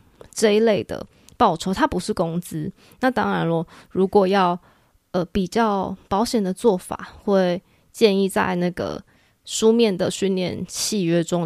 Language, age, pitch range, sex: Chinese, 20-39, 180-220 Hz, female